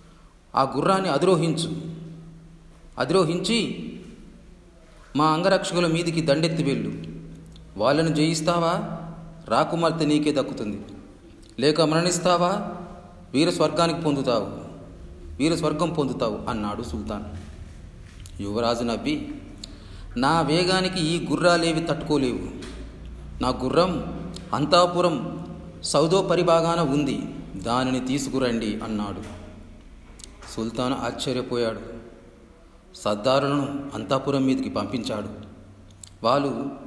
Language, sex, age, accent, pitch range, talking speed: Telugu, male, 40-59, native, 125-175 Hz, 75 wpm